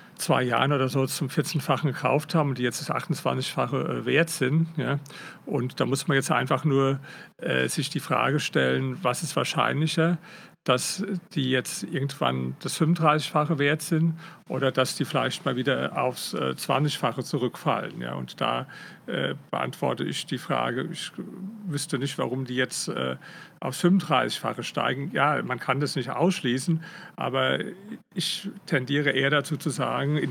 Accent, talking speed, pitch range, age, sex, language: German, 155 wpm, 130-165 Hz, 50-69, male, German